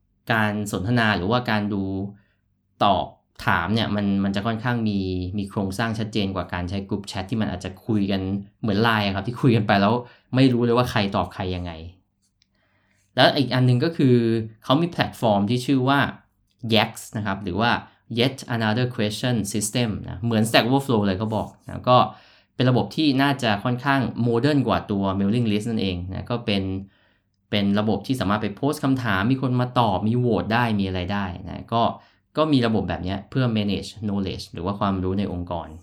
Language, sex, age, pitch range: Thai, male, 20-39, 100-120 Hz